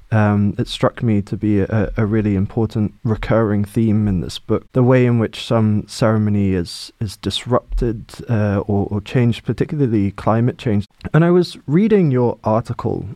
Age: 20-39